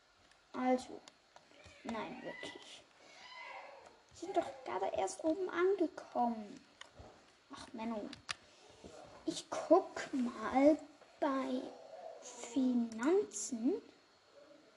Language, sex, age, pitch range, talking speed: German, female, 10-29, 260-325 Hz, 65 wpm